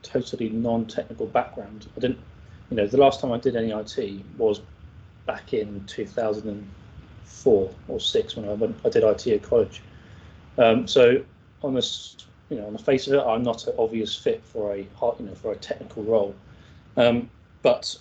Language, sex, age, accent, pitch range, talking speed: English, male, 30-49, British, 100-115 Hz, 180 wpm